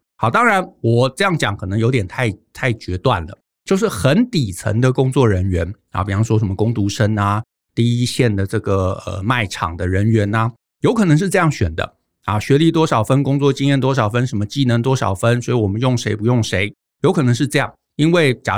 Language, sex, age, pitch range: Chinese, male, 60-79, 105-140 Hz